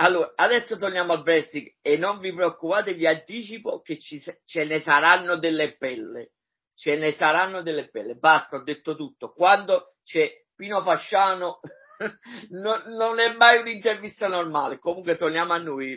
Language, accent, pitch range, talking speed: Italian, native, 140-180 Hz, 155 wpm